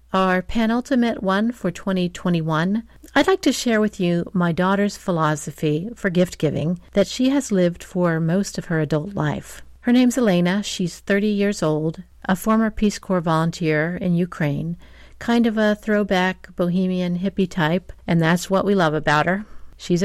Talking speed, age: 165 wpm, 50-69